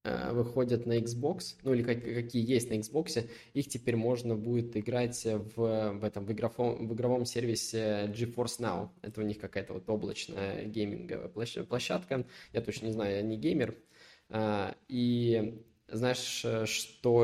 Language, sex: Russian, male